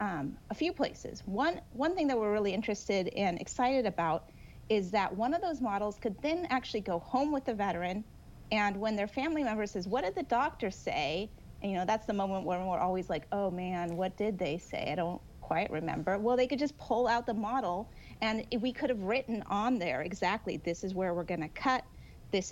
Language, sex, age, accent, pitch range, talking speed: English, female, 30-49, American, 190-240 Hz, 220 wpm